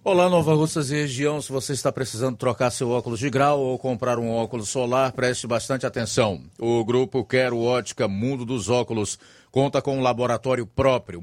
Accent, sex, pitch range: Brazilian, male, 125-140 Hz